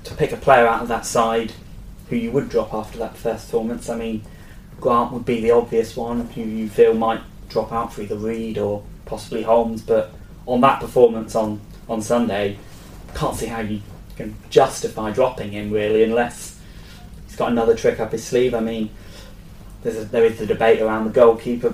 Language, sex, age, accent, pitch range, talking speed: English, male, 10-29, British, 105-120 Hz, 200 wpm